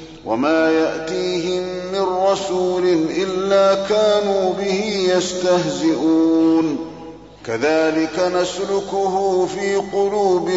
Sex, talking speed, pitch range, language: male, 70 wpm, 160-185 Hz, Arabic